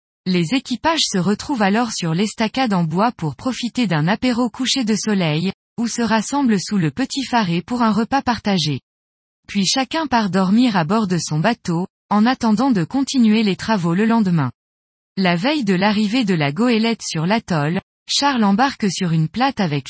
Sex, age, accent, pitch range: female, 20-39, French, 180-240 Hz